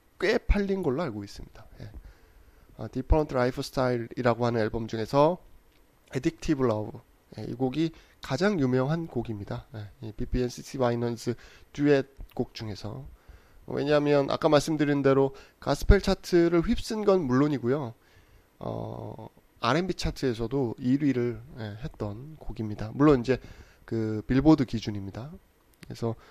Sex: male